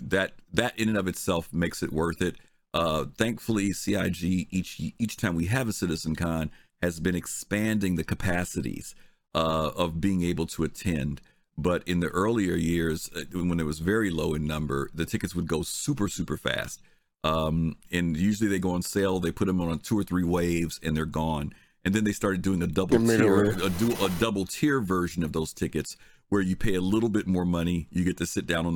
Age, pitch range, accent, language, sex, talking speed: 50-69, 80-95 Hz, American, English, male, 205 wpm